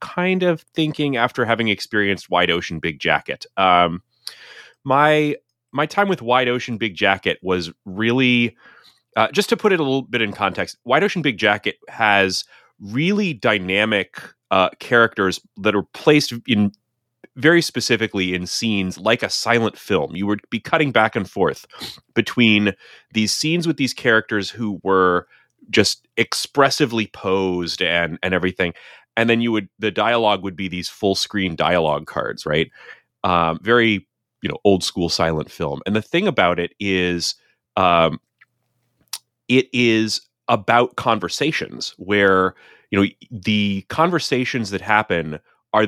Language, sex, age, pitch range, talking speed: English, male, 30-49, 95-125 Hz, 150 wpm